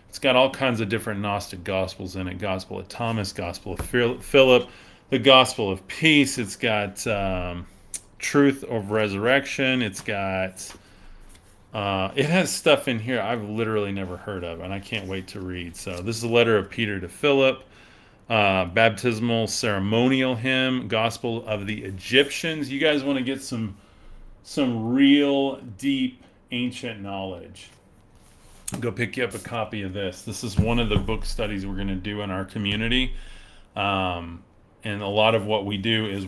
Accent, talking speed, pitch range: American, 170 wpm, 95-120 Hz